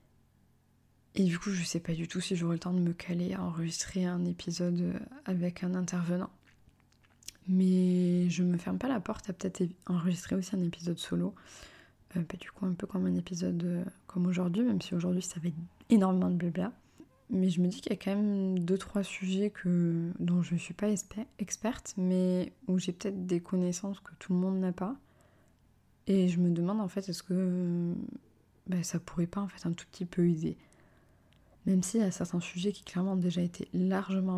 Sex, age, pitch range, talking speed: female, 20-39, 170-190 Hz, 210 wpm